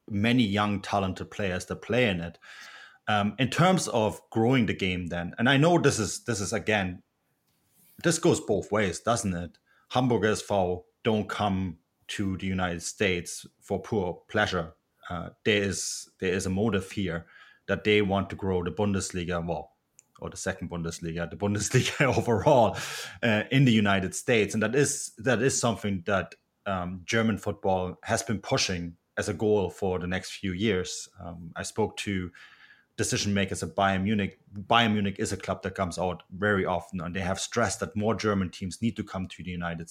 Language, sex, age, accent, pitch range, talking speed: English, male, 30-49, German, 95-110 Hz, 185 wpm